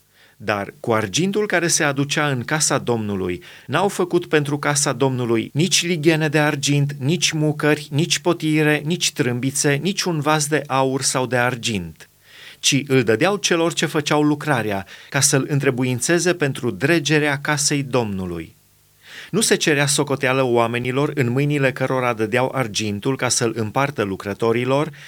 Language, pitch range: Romanian, 120-150 Hz